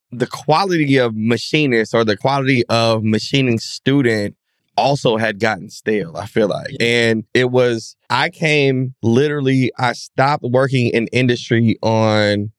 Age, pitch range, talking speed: 20-39, 115-135 Hz, 140 wpm